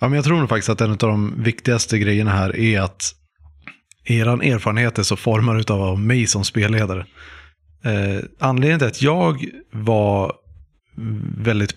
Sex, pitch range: male, 95-120 Hz